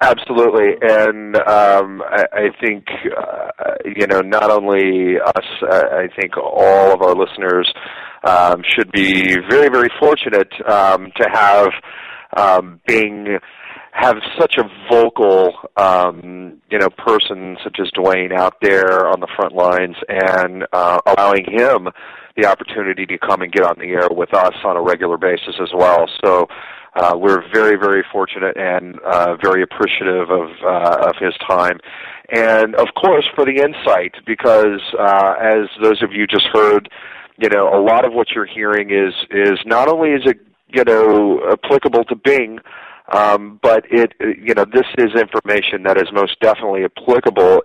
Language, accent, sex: English, American, male